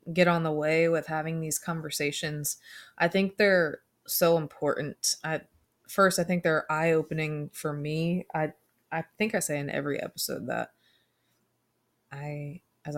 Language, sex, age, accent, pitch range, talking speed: English, female, 20-39, American, 150-165 Hz, 155 wpm